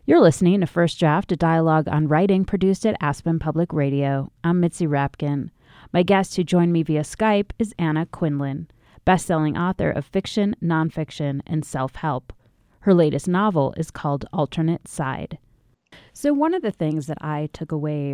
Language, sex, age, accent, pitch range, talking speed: English, female, 30-49, American, 140-165 Hz, 165 wpm